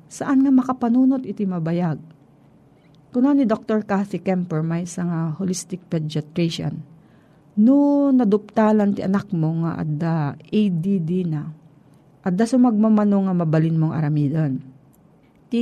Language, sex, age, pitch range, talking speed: Filipino, female, 40-59, 160-210 Hz, 110 wpm